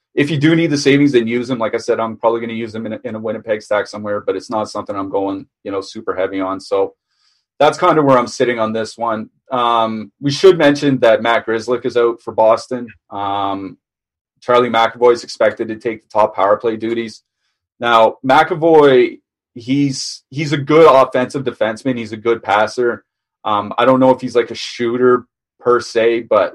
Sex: male